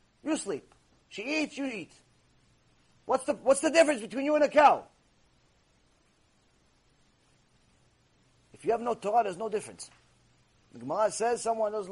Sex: male